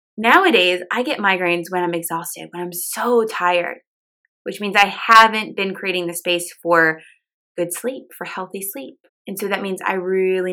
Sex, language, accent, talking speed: female, English, American, 175 wpm